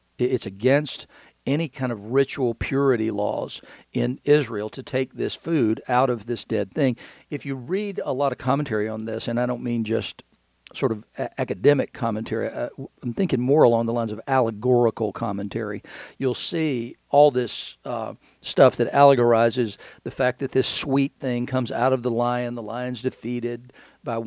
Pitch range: 115-135 Hz